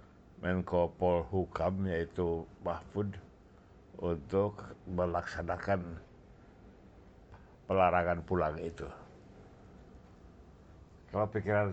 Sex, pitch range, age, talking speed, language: male, 85-105 Hz, 60-79, 55 wpm, Indonesian